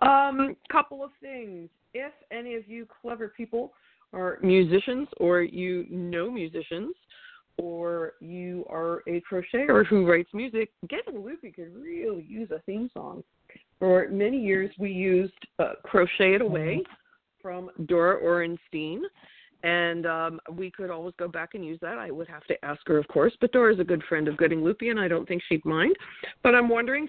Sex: female